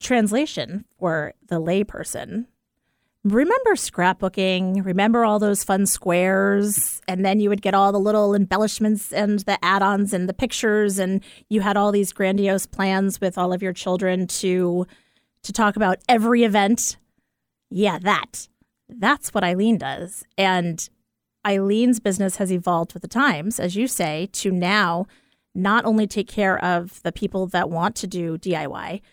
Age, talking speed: 30-49, 155 wpm